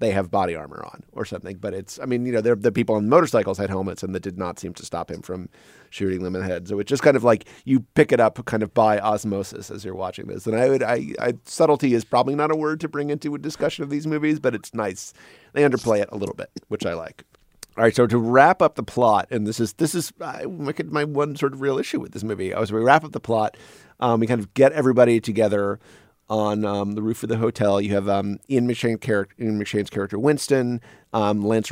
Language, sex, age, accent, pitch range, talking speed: English, male, 30-49, American, 100-130 Hz, 260 wpm